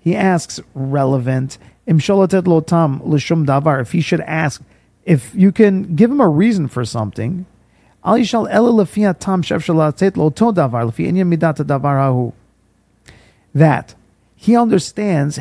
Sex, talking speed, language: male, 75 wpm, English